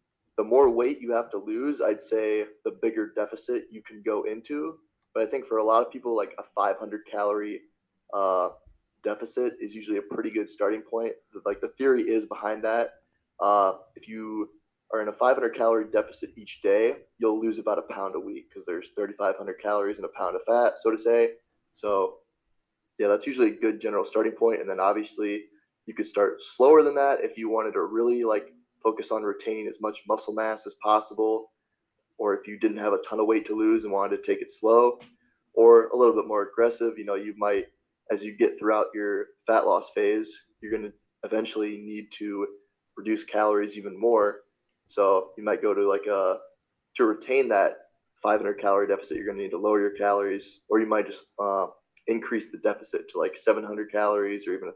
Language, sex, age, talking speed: English, male, 20-39, 205 wpm